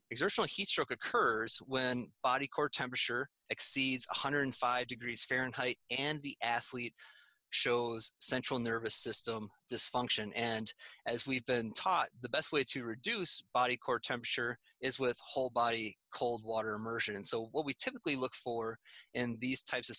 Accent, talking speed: American, 155 wpm